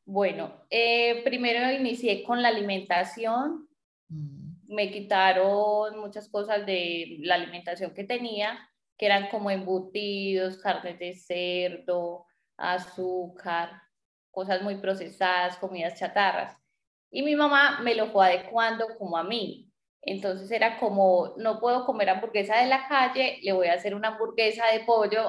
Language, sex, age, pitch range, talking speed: Spanish, female, 20-39, 185-230 Hz, 135 wpm